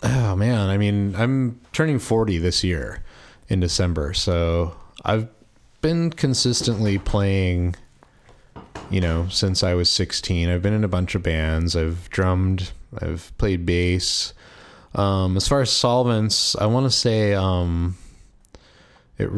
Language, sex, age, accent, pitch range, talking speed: English, male, 30-49, American, 80-100 Hz, 140 wpm